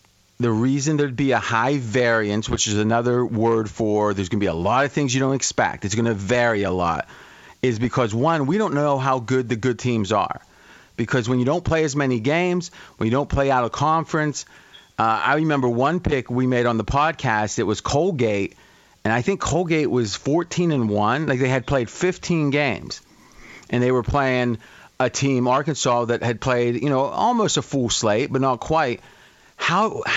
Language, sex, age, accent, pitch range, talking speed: English, male, 30-49, American, 115-140 Hz, 205 wpm